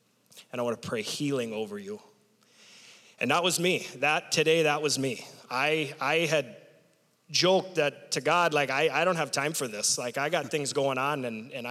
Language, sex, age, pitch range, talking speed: English, male, 30-49, 120-150 Hz, 205 wpm